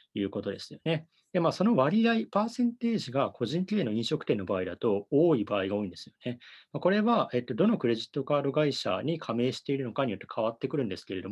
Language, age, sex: Japanese, 30-49, male